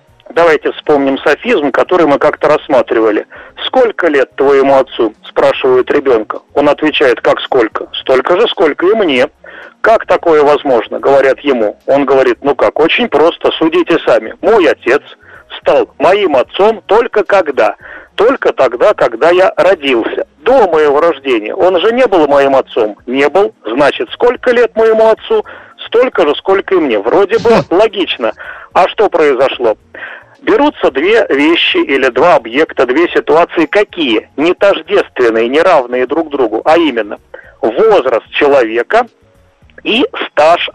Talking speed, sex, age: 140 wpm, male, 40-59